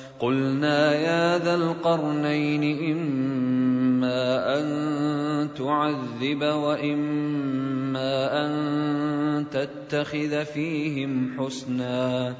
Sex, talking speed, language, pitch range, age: male, 60 wpm, Arabic, 135-155 Hz, 40-59